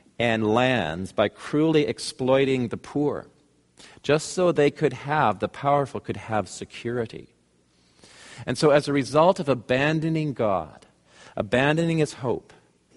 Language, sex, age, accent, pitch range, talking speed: English, male, 50-69, American, 110-145 Hz, 130 wpm